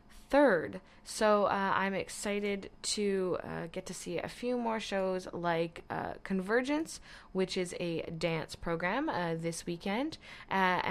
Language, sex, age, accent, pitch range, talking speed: English, female, 20-39, American, 165-200 Hz, 145 wpm